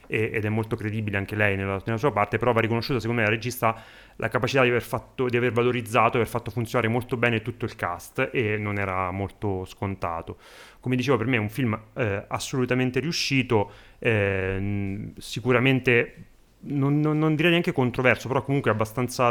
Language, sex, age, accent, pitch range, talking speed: Italian, male, 30-49, native, 105-120 Hz, 185 wpm